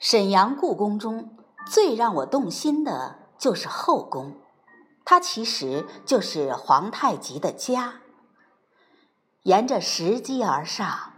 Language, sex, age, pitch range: Chinese, female, 60-79, 210-310 Hz